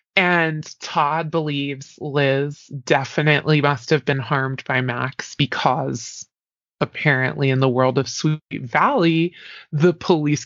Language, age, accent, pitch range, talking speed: English, 20-39, American, 135-165 Hz, 120 wpm